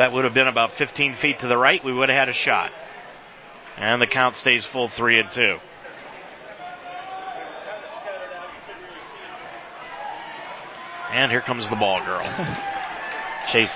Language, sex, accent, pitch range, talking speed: English, male, American, 145-185 Hz, 135 wpm